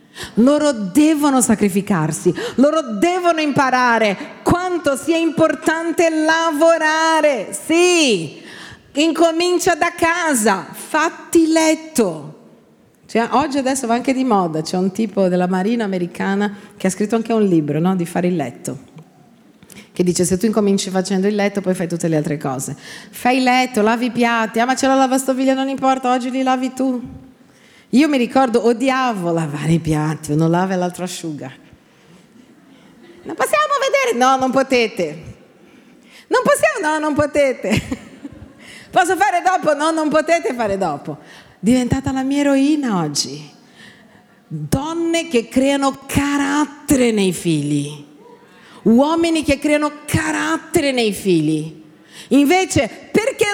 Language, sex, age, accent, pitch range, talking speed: Italian, female, 40-59, native, 195-305 Hz, 135 wpm